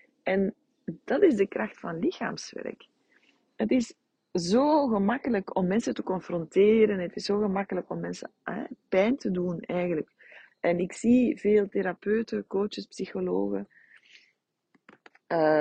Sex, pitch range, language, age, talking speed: female, 180-230 Hz, Dutch, 40-59, 125 wpm